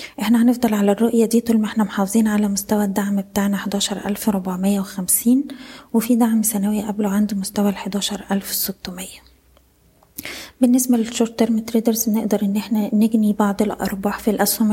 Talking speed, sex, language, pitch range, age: 135 wpm, female, Arabic, 200-225 Hz, 20-39